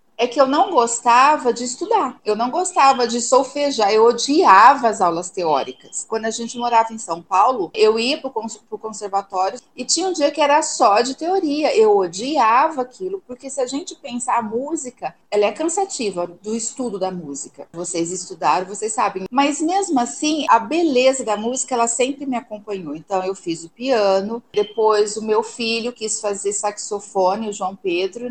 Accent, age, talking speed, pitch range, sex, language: Brazilian, 40-59, 180 wpm, 215-280 Hz, female, Portuguese